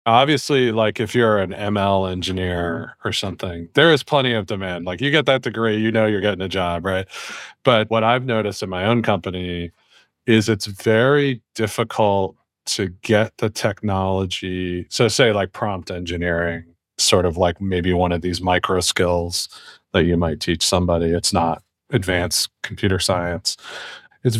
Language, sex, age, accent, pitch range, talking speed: English, male, 40-59, American, 100-125 Hz, 165 wpm